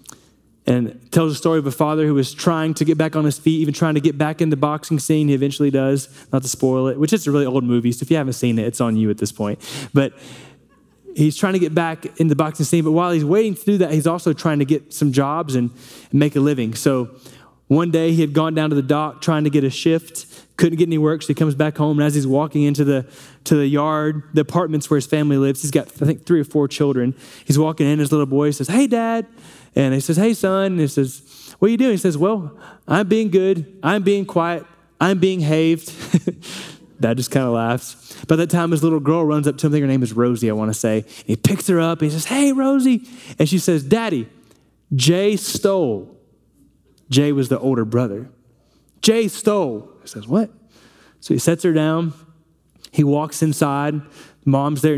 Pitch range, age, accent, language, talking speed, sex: 135-165 Hz, 20-39, American, English, 235 wpm, male